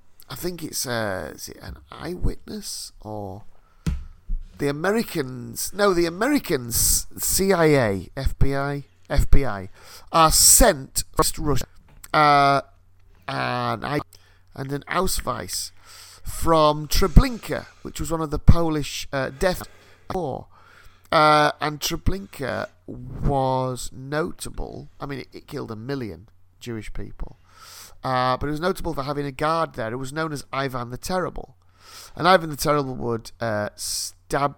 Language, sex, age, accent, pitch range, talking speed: English, male, 40-59, British, 95-150 Hz, 130 wpm